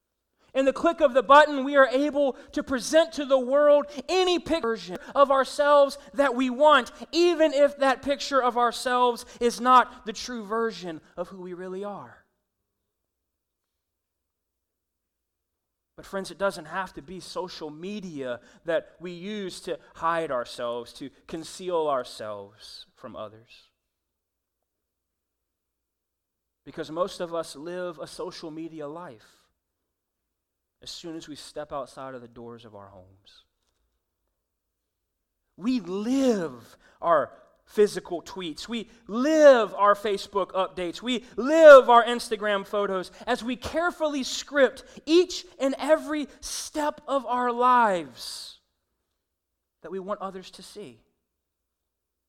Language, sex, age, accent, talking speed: English, male, 30-49, American, 125 wpm